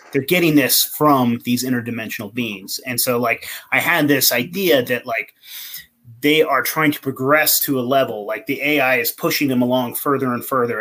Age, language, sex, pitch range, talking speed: 30-49, English, male, 125-150 Hz, 190 wpm